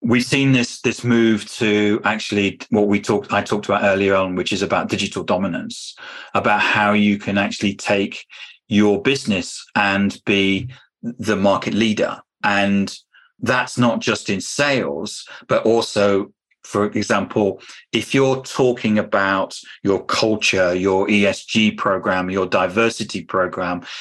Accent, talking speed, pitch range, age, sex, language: British, 135 wpm, 95-115 Hz, 40-59, male, English